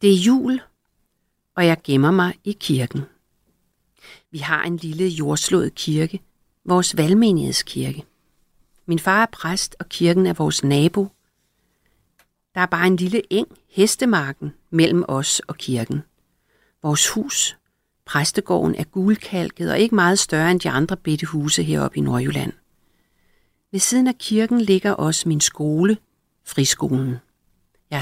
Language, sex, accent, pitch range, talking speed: Danish, female, native, 145-190 Hz, 135 wpm